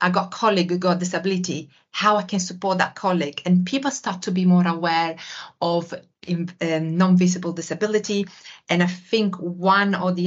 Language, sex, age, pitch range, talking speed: English, female, 30-49, 165-185 Hz, 170 wpm